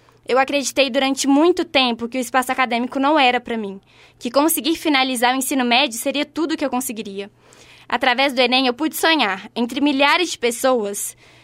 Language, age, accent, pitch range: Portuguese, 10-29, Brazilian, 235-290 Hz